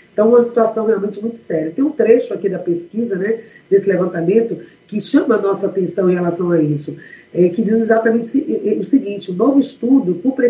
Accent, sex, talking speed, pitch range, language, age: Brazilian, female, 190 wpm, 185-235 Hz, Portuguese, 40-59